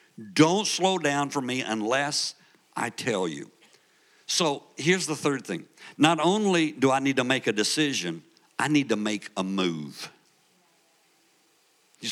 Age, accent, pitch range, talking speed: 60-79, American, 110-155 Hz, 150 wpm